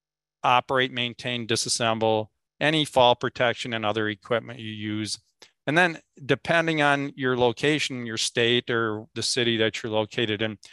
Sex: male